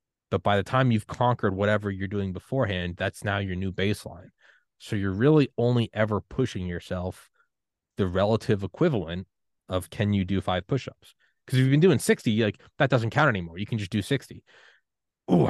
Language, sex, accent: English, male, American